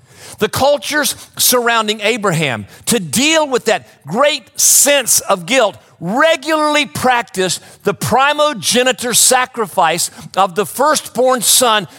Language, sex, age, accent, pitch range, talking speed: English, male, 50-69, American, 190-270 Hz, 105 wpm